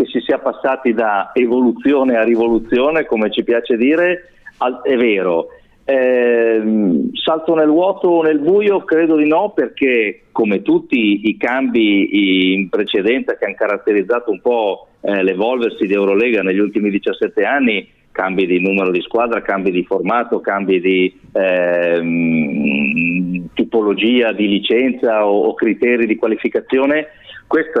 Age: 50-69